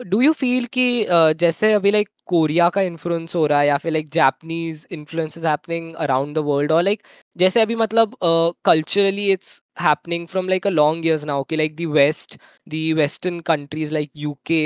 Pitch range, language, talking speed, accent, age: 160-195 Hz, Hindi, 190 wpm, native, 20-39